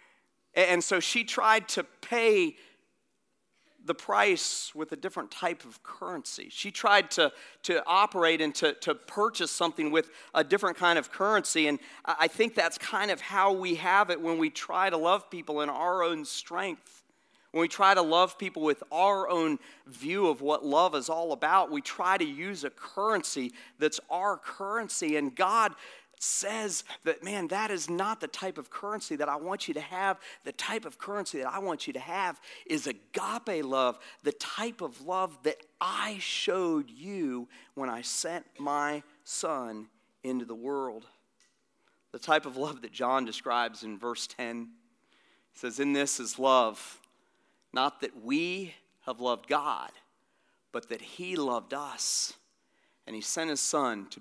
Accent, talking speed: American, 170 wpm